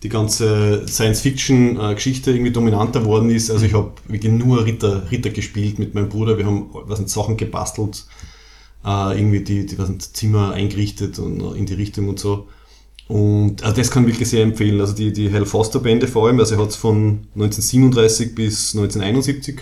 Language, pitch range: German, 105-115 Hz